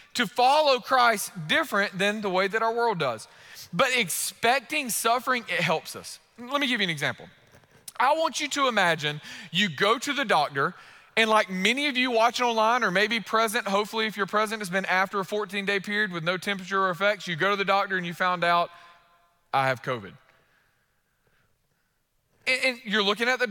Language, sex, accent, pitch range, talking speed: English, male, American, 185-255 Hz, 195 wpm